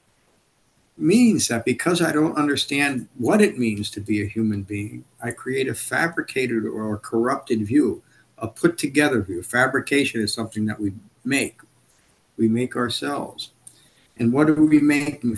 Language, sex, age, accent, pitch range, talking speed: English, male, 50-69, American, 115-145 Hz, 150 wpm